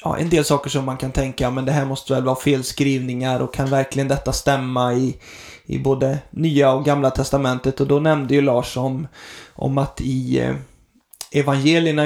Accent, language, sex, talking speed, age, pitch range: native, Swedish, male, 190 wpm, 20-39, 130-150 Hz